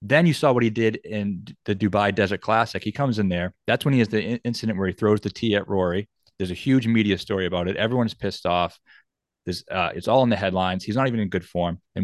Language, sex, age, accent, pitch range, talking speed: English, male, 30-49, American, 95-110 Hz, 260 wpm